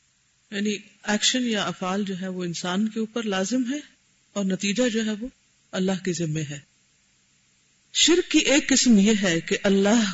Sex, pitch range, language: female, 165-240 Hz, Urdu